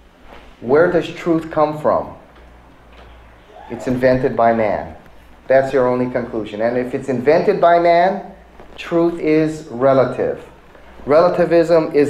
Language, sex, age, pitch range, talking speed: English, male, 30-49, 130-170 Hz, 120 wpm